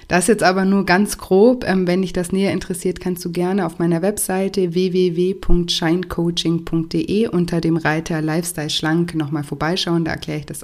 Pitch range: 165-190 Hz